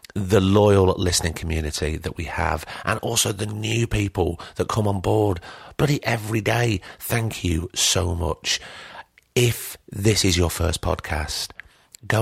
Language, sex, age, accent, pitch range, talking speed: English, male, 40-59, British, 85-105 Hz, 145 wpm